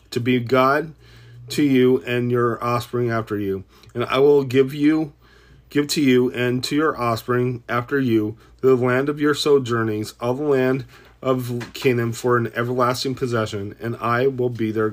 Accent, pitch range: American, 115-135 Hz